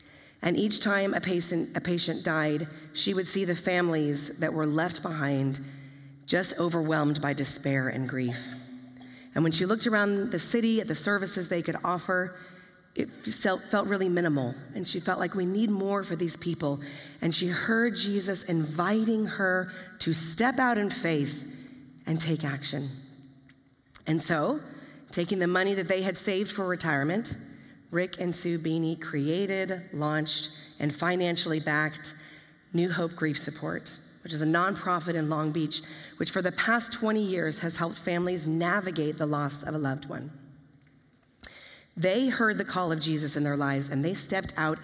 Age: 30-49